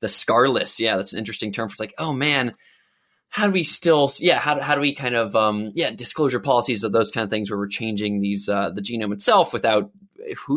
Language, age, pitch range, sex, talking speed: English, 20-39, 115-165 Hz, male, 240 wpm